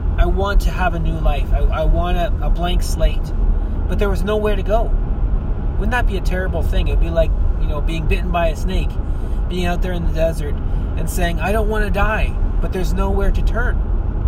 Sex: male